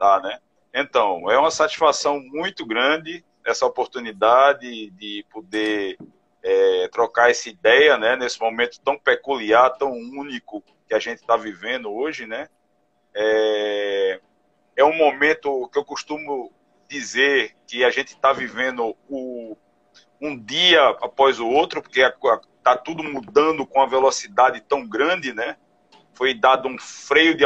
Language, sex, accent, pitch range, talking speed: Portuguese, male, Brazilian, 120-160 Hz, 145 wpm